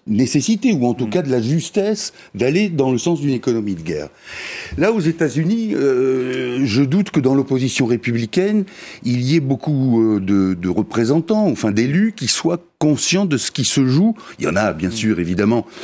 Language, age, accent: French, 60-79, French